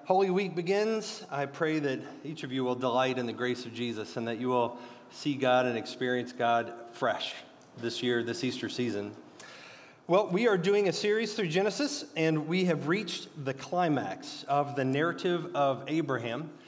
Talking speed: 180 wpm